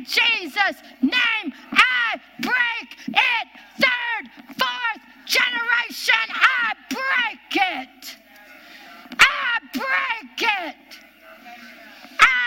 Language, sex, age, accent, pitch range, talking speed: English, female, 50-69, American, 275-450 Hz, 70 wpm